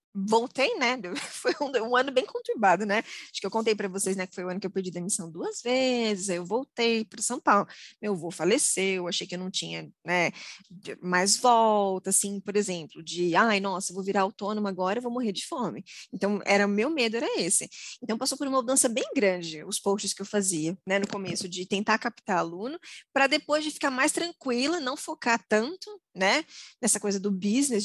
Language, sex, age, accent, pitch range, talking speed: Portuguese, female, 20-39, Brazilian, 195-255 Hz, 205 wpm